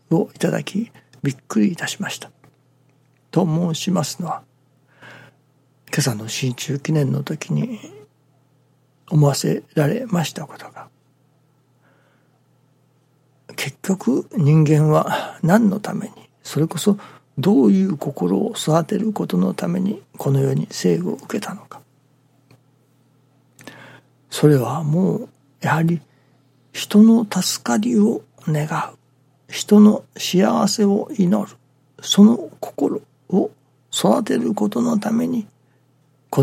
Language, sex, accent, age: Japanese, male, native, 60-79